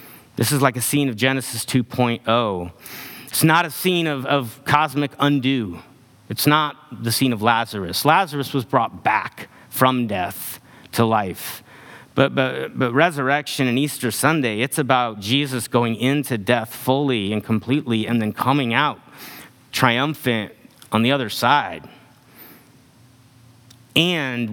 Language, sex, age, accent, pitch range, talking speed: English, male, 30-49, American, 115-135 Hz, 135 wpm